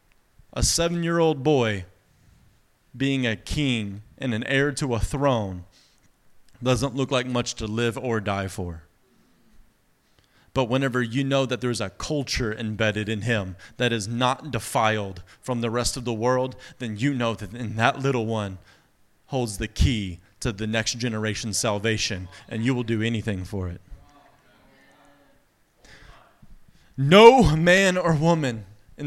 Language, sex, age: English, male, 30-49